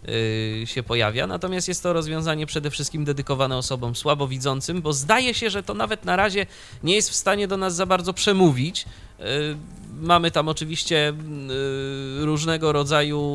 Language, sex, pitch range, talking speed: Polish, male, 115-170 Hz, 150 wpm